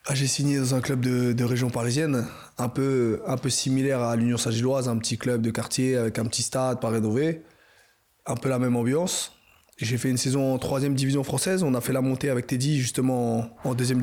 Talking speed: 220 wpm